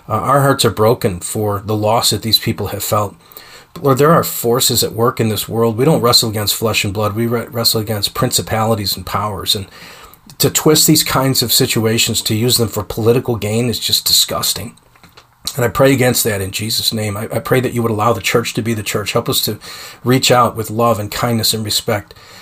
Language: English